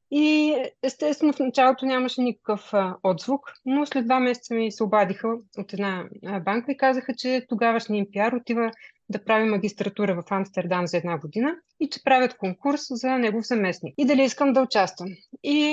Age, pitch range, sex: 30-49, 205-255 Hz, female